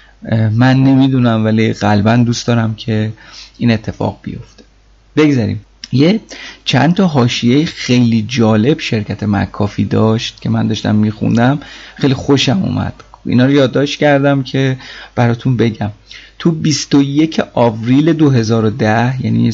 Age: 30-49